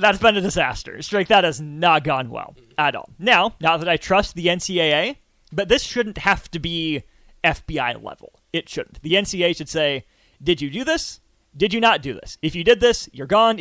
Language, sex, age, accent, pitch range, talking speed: English, male, 30-49, American, 155-205 Hz, 205 wpm